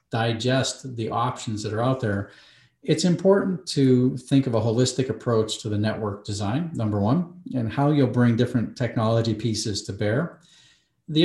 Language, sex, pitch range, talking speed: English, male, 110-140 Hz, 165 wpm